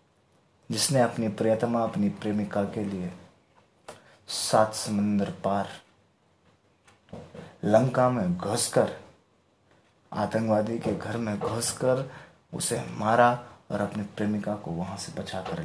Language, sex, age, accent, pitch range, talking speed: Hindi, male, 20-39, native, 105-135 Hz, 105 wpm